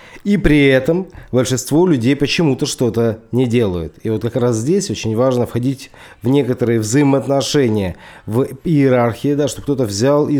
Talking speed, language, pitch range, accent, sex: 150 wpm, Russian, 115-145 Hz, native, male